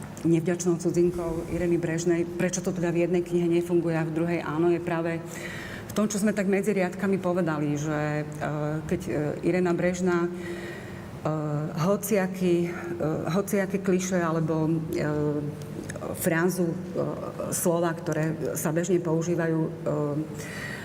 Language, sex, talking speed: Slovak, female, 130 wpm